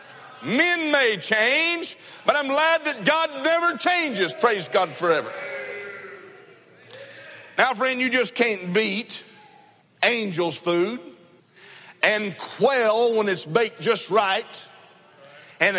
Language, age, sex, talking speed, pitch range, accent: English, 50-69, male, 110 wpm, 195-280 Hz, American